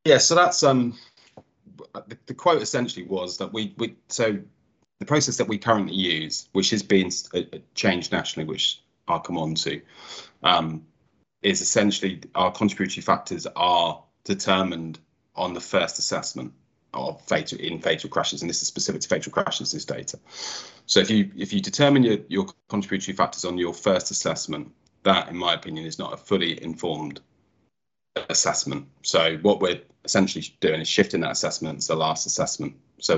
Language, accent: English, British